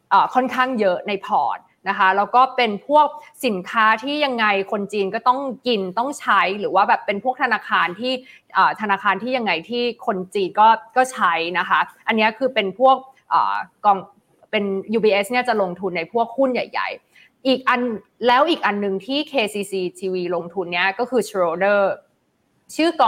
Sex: female